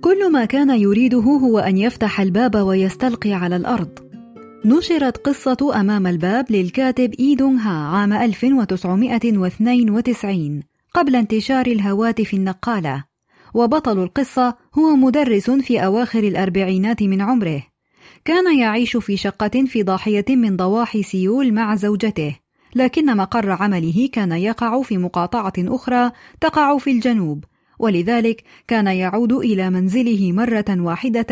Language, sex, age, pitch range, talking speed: Arabic, female, 20-39, 190-250 Hz, 115 wpm